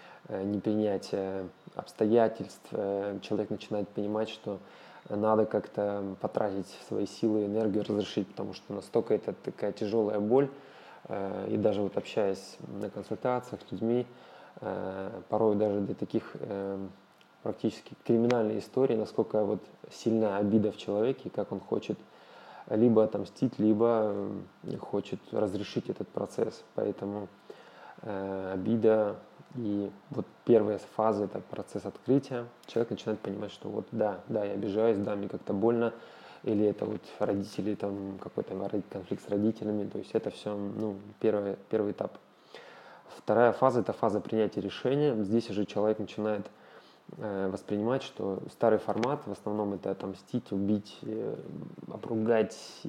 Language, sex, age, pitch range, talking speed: Russian, male, 20-39, 100-110 Hz, 130 wpm